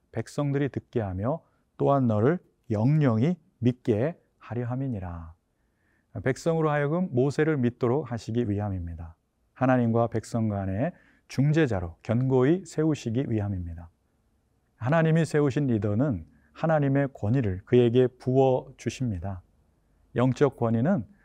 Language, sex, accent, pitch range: Korean, male, native, 105-140 Hz